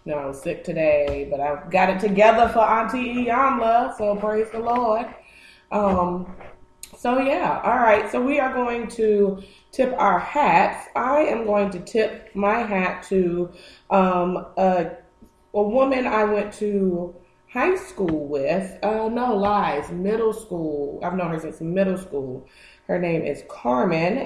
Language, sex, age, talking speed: English, female, 20-39, 155 wpm